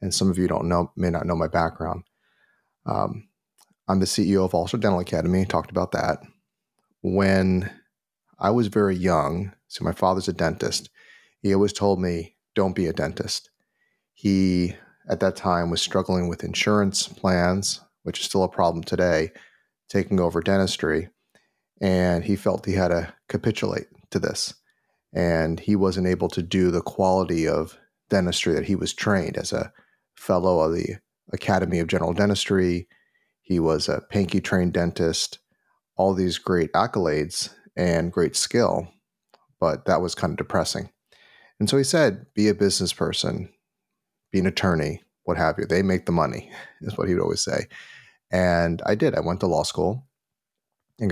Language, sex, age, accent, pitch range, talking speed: English, male, 30-49, American, 85-95 Hz, 165 wpm